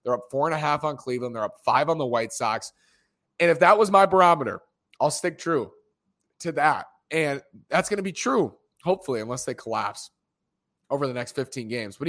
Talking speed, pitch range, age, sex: 210 wpm, 125-180 Hz, 30-49, male